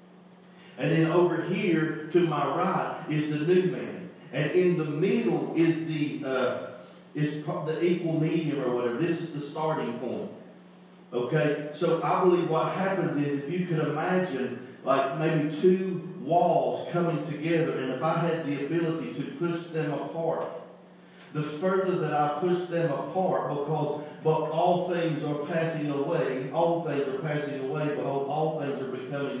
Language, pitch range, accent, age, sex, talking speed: English, 150-175 Hz, American, 40-59, male, 165 wpm